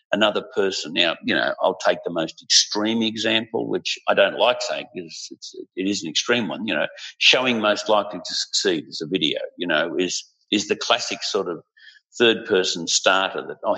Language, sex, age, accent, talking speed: English, male, 50-69, Australian, 205 wpm